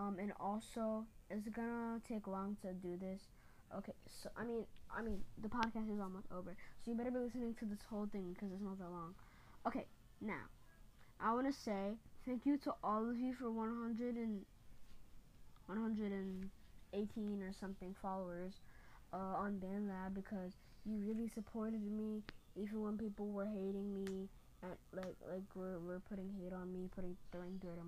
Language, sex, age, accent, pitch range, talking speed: English, female, 10-29, American, 185-215 Hz, 175 wpm